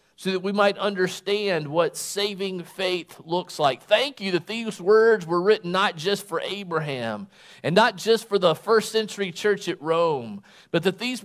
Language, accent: English, American